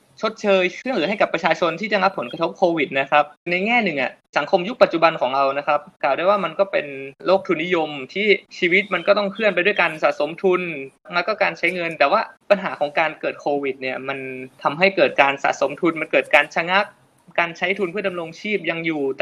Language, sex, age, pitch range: Thai, male, 20-39, 150-200 Hz